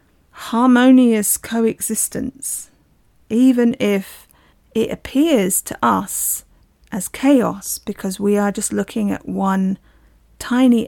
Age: 40-59